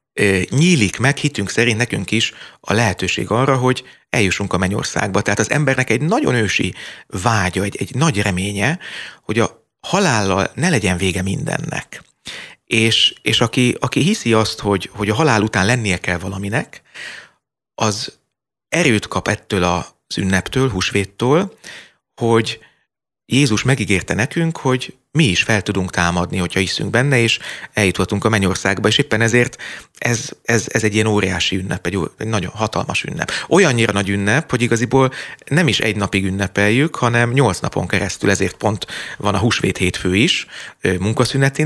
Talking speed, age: 155 wpm, 30-49